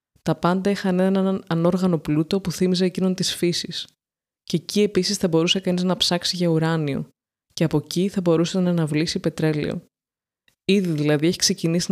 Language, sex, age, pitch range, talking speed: Greek, female, 20-39, 160-190 Hz, 165 wpm